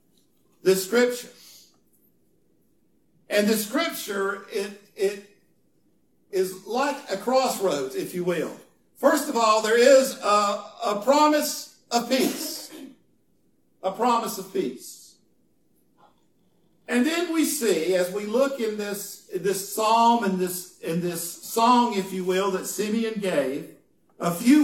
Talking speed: 130 wpm